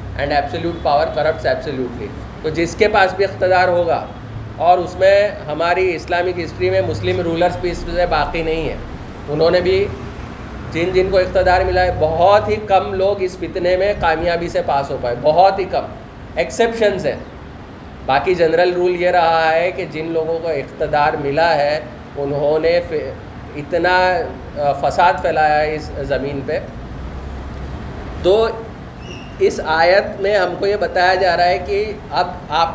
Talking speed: 160 wpm